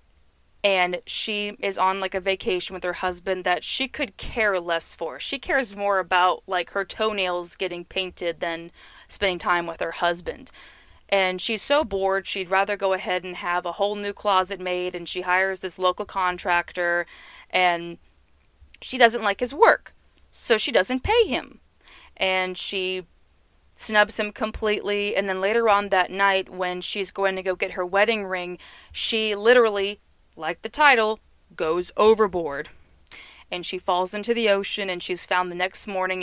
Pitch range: 180-235 Hz